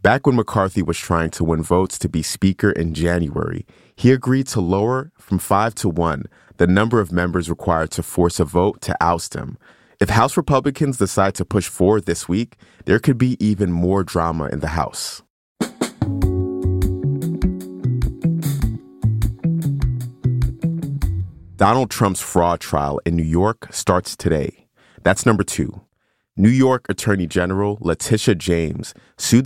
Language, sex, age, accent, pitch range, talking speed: English, male, 30-49, American, 85-115 Hz, 145 wpm